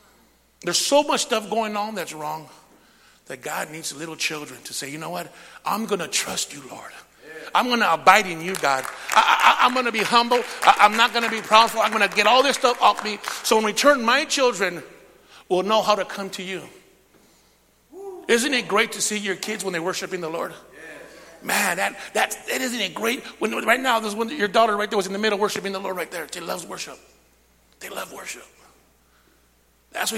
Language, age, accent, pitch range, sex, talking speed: English, 50-69, American, 135-210 Hz, male, 220 wpm